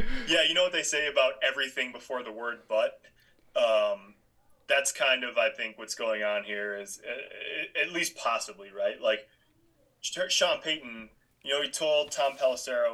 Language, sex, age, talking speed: English, male, 20-39, 170 wpm